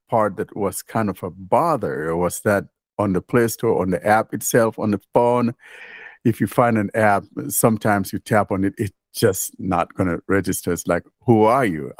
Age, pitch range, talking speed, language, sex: 60-79, 90-110 Hz, 205 wpm, English, male